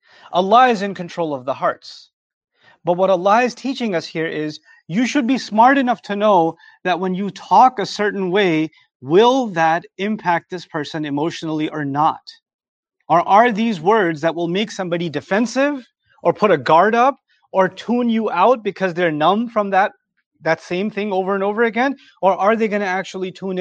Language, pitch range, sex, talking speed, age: English, 165-215 Hz, male, 190 wpm, 30-49